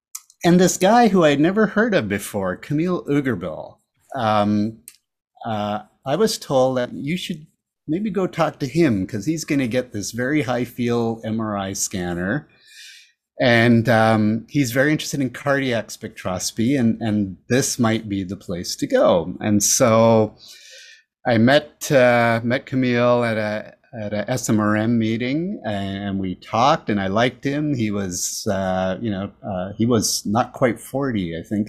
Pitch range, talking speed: 105-140 Hz, 165 wpm